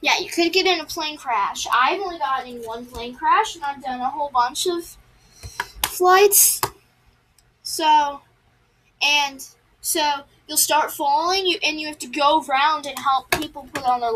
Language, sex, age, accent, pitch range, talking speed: English, female, 10-29, American, 250-345 Hz, 180 wpm